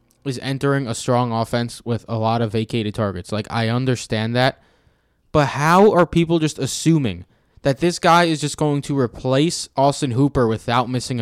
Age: 20-39